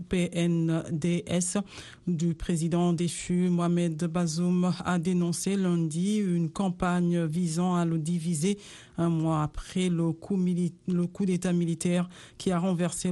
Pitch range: 165-180 Hz